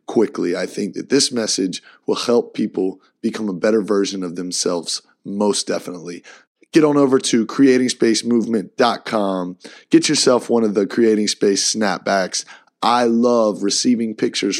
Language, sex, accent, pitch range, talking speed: English, male, American, 100-120 Hz, 145 wpm